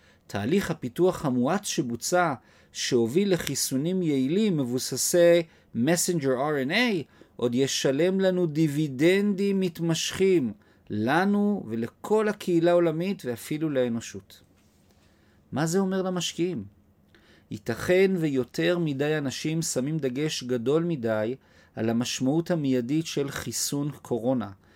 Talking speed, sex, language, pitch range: 95 wpm, male, Hebrew, 120-165 Hz